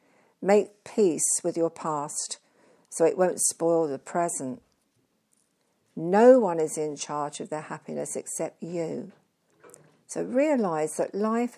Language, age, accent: English, 60-79, British